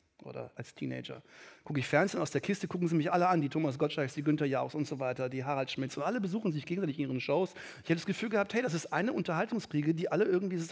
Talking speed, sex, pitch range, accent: 275 wpm, male, 135-180 Hz, German